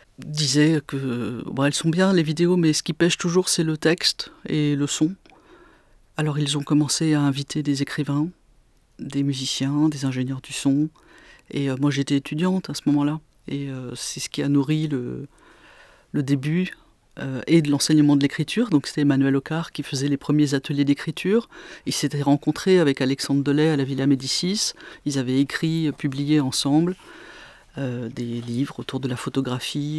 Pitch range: 140-165 Hz